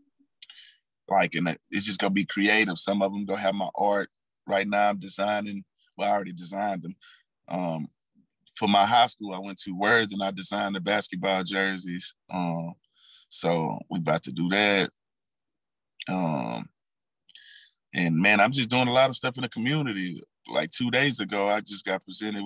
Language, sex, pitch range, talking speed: English, male, 90-105 Hz, 180 wpm